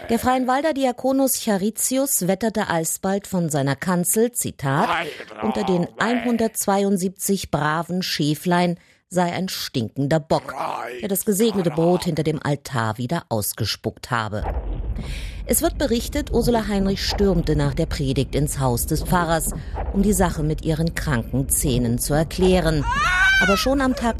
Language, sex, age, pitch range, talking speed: German, female, 50-69, 130-195 Hz, 135 wpm